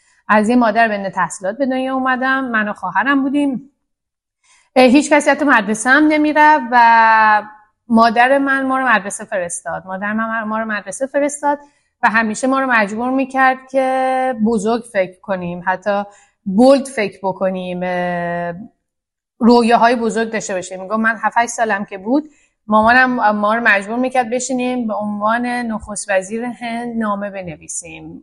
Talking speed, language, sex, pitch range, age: 145 wpm, Persian, female, 210-265 Hz, 30-49